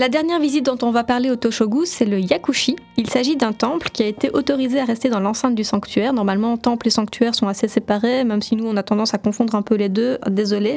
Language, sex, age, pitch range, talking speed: French, female, 20-39, 210-255 Hz, 255 wpm